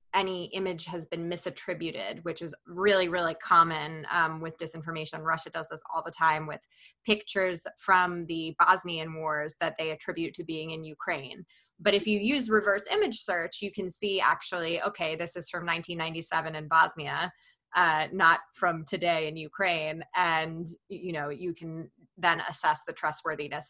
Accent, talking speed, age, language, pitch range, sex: American, 160 wpm, 20-39, English, 165-195 Hz, female